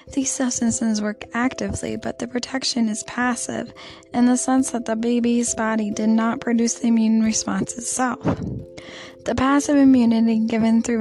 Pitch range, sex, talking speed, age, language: 225-250 Hz, female, 155 wpm, 10-29, English